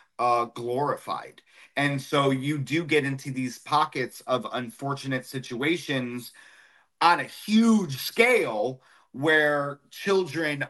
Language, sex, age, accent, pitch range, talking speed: English, male, 30-49, American, 120-150 Hz, 105 wpm